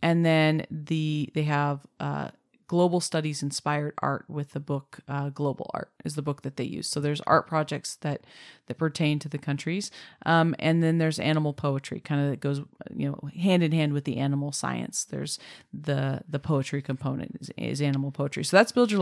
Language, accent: English, American